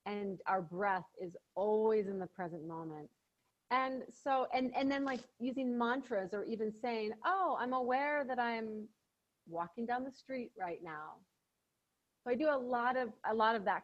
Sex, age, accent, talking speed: female, 30-49, American, 180 wpm